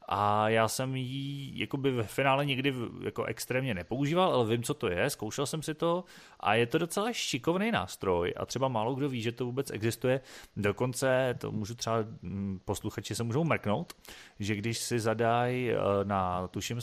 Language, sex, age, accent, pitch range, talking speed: Czech, male, 30-49, native, 100-120 Hz, 170 wpm